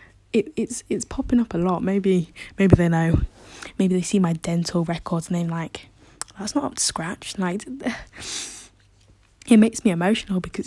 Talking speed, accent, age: 175 wpm, British, 10-29